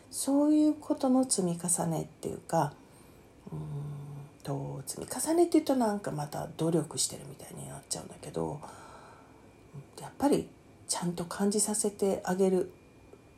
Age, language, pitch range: 40-59, Japanese, 150-230 Hz